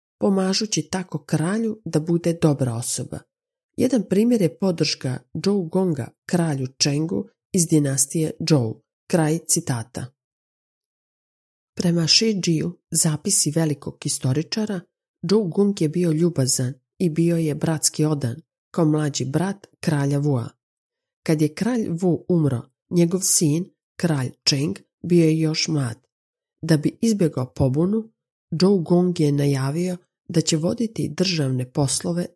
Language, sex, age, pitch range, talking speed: Croatian, female, 40-59, 140-185 Hz, 125 wpm